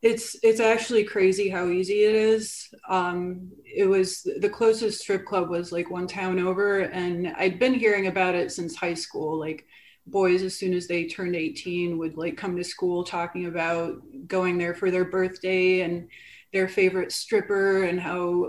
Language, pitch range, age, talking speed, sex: English, 180-210 Hz, 30-49, 180 wpm, female